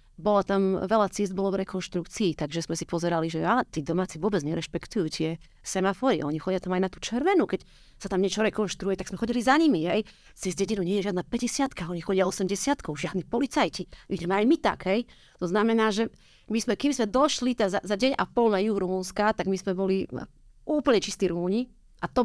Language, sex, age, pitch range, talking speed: Slovak, female, 30-49, 180-225 Hz, 210 wpm